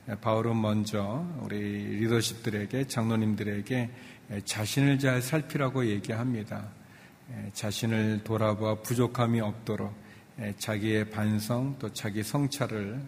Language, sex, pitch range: Korean, male, 105-130 Hz